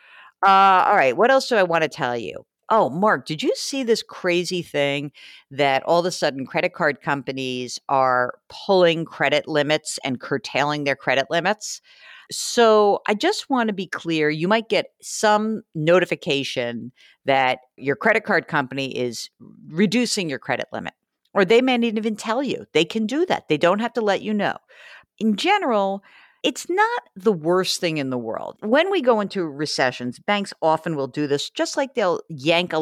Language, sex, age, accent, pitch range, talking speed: English, female, 50-69, American, 145-220 Hz, 185 wpm